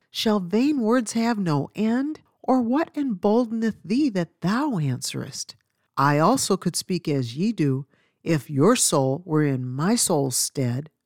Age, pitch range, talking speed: 50-69, 145-205 Hz, 150 wpm